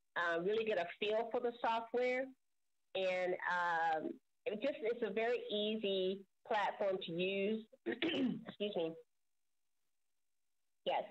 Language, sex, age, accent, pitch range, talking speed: English, female, 40-59, American, 170-220 Hz, 110 wpm